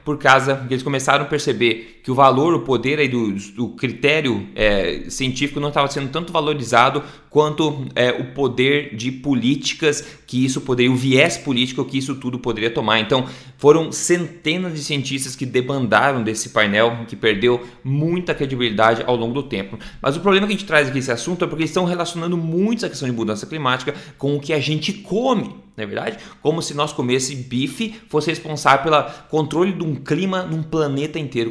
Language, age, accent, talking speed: Portuguese, 20-39, Brazilian, 195 wpm